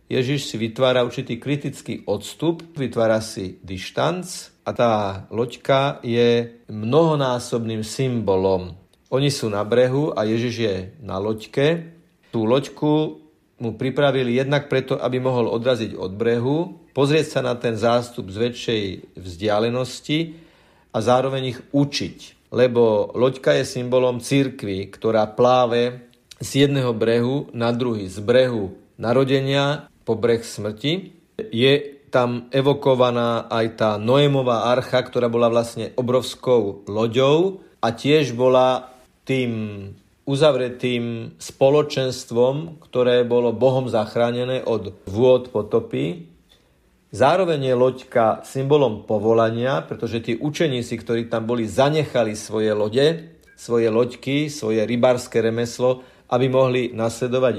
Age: 50-69